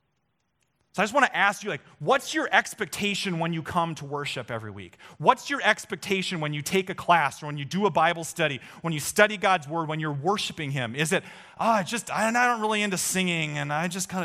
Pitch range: 160-250 Hz